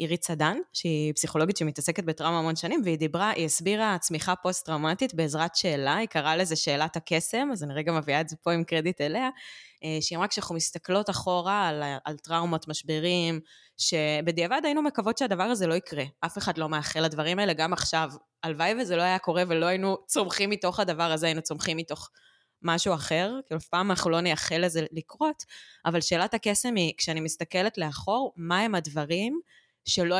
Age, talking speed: 20-39, 155 wpm